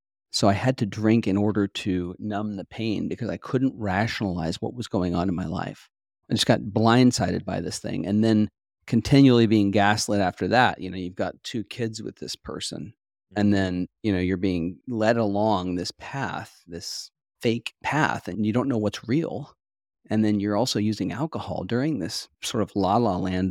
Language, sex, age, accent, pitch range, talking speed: English, male, 40-59, American, 95-115 Hz, 195 wpm